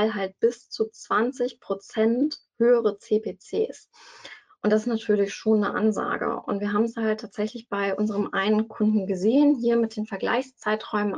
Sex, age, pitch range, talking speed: female, 20-39, 195-230 Hz, 155 wpm